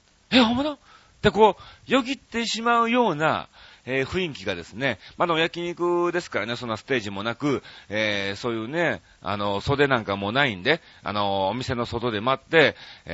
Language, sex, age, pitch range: Japanese, male, 40-59, 100-170 Hz